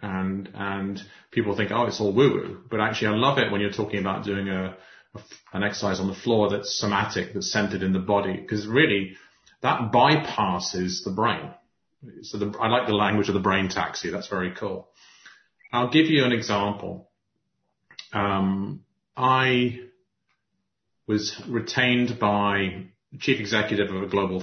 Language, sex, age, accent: English, male, 30-49, British